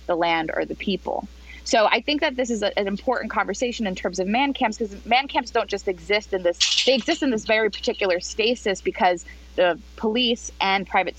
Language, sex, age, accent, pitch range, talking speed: English, female, 20-39, American, 170-230 Hz, 210 wpm